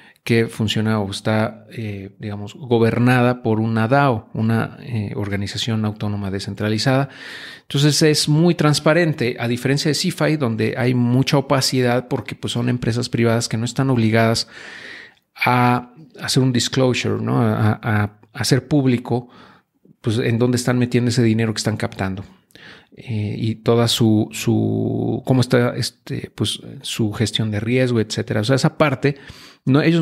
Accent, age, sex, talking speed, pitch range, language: Mexican, 40-59, male, 150 wpm, 110-130 Hz, Spanish